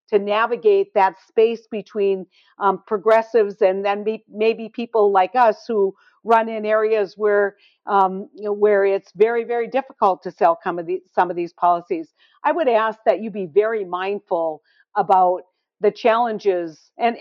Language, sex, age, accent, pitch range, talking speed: English, female, 50-69, American, 165-210 Hz, 165 wpm